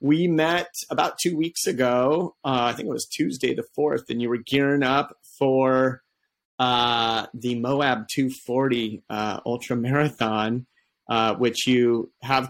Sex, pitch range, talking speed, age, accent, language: male, 115-135 Hz, 150 wpm, 30-49, American, English